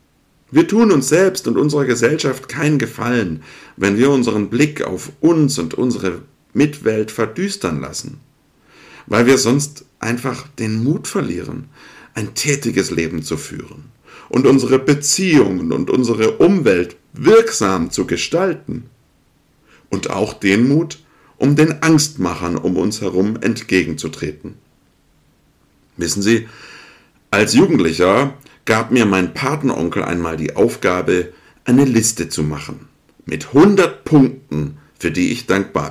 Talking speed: 125 wpm